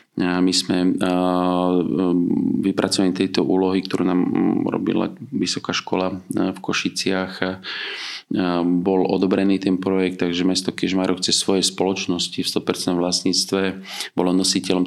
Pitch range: 90-95 Hz